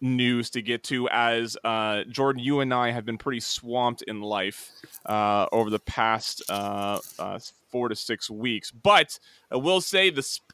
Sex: male